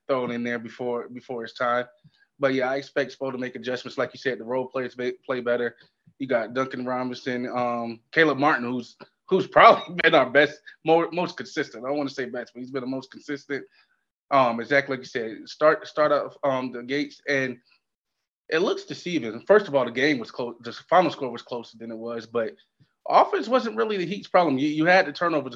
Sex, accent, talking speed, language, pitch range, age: male, American, 220 wpm, English, 125-150 Hz, 20-39